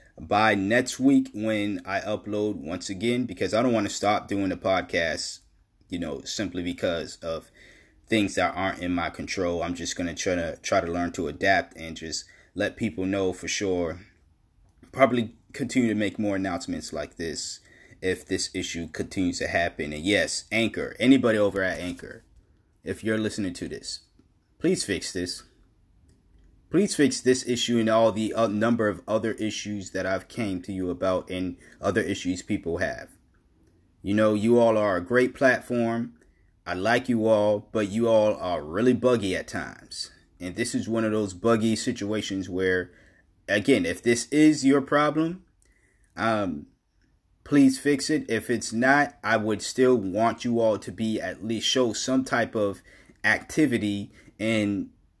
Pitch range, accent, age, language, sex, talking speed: 95-120 Hz, American, 30-49, English, male, 170 wpm